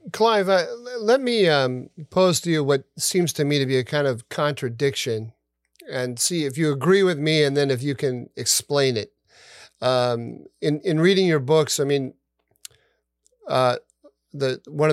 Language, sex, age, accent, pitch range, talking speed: English, male, 40-59, American, 130-165 Hz, 175 wpm